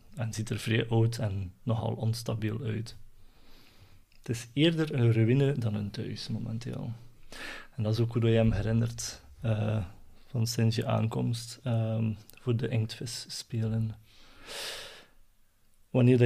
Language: Dutch